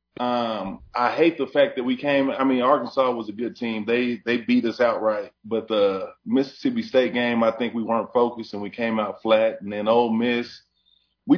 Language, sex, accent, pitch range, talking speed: English, male, American, 115-150 Hz, 210 wpm